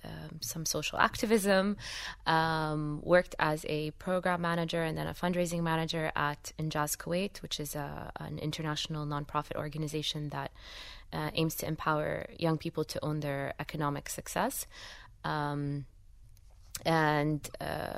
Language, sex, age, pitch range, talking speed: English, female, 20-39, 145-165 Hz, 130 wpm